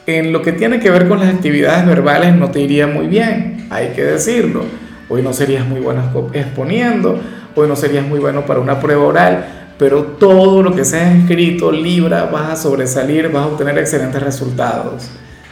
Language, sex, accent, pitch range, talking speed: Spanish, male, Venezuelan, 140-180 Hz, 185 wpm